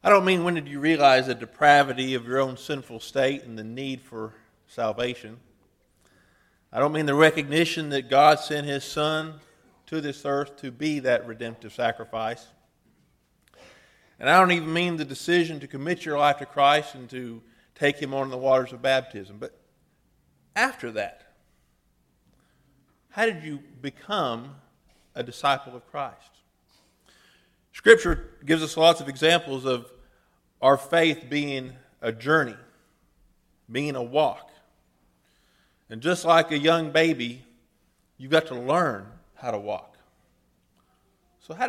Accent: American